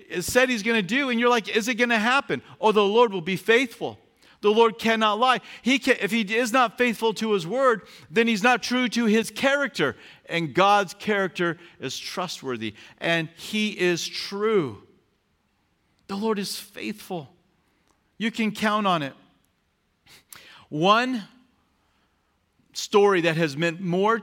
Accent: American